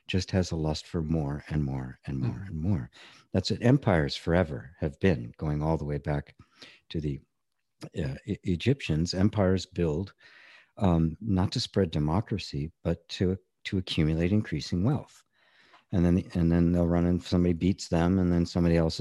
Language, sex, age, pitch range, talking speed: English, male, 50-69, 80-100 Hz, 175 wpm